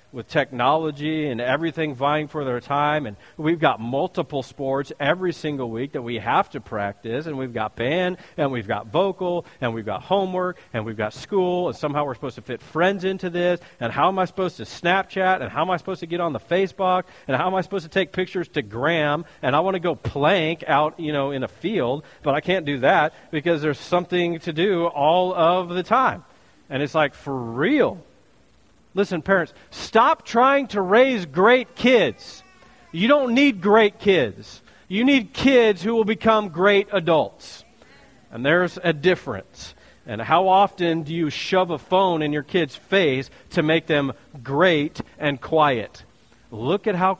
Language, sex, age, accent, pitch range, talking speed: English, male, 40-59, American, 135-190 Hz, 190 wpm